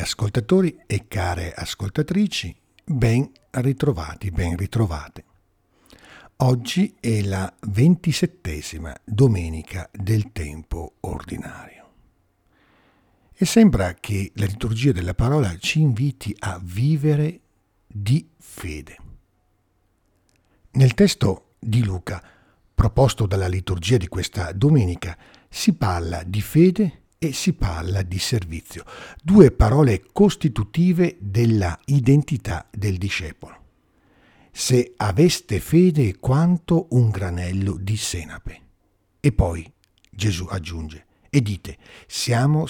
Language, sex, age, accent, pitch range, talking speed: Italian, male, 60-79, native, 95-135 Hz, 100 wpm